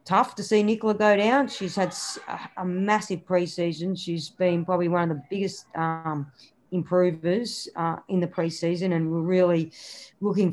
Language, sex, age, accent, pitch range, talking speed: English, female, 40-59, Australian, 165-190 Hz, 160 wpm